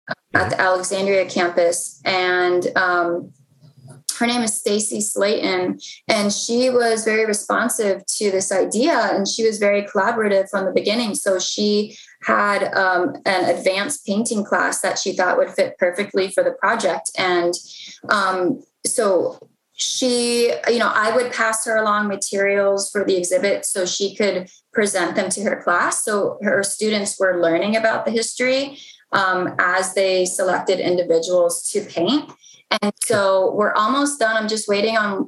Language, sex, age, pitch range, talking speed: English, female, 20-39, 185-220 Hz, 155 wpm